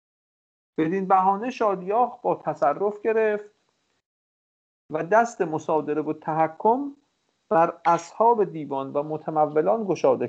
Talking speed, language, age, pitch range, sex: 100 wpm, English, 50-69, 155-210 Hz, male